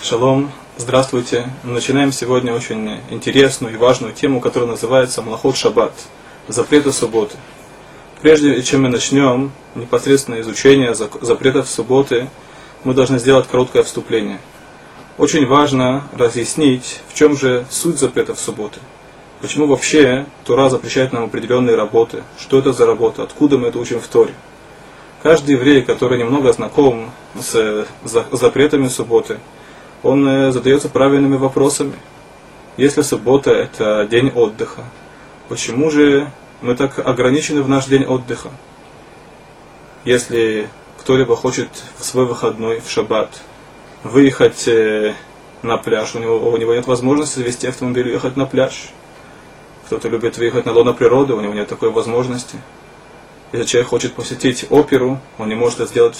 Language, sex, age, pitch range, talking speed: Russian, male, 20-39, 120-140 Hz, 135 wpm